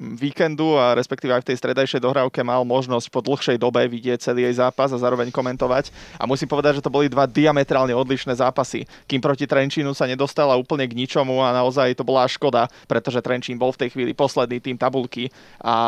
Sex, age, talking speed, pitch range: male, 20-39, 200 wpm, 125-140 Hz